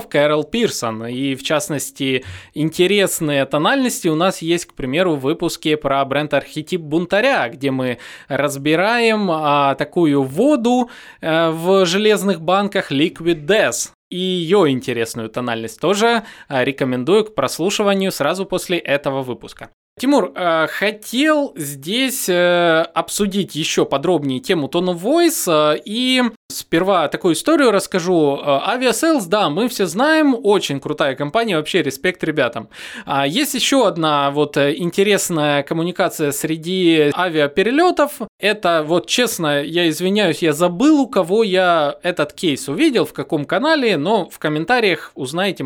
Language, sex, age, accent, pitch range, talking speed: Russian, male, 20-39, native, 145-210 Hz, 125 wpm